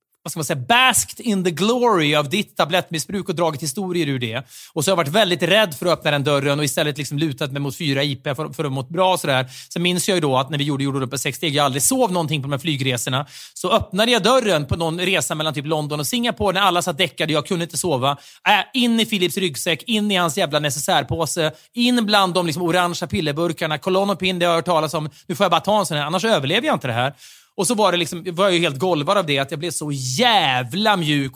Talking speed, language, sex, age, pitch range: 260 wpm, Swedish, male, 30-49, 150-190 Hz